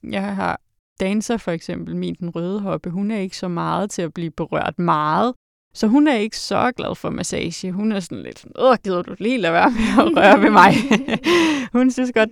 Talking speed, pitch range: 225 wpm, 175-215 Hz